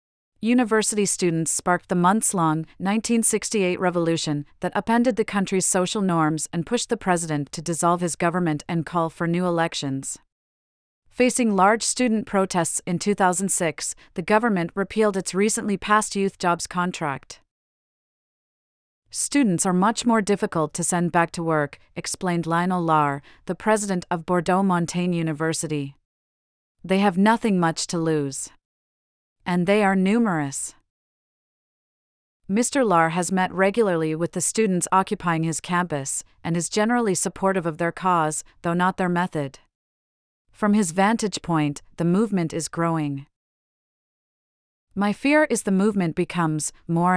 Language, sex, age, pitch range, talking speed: English, female, 30-49, 160-200 Hz, 135 wpm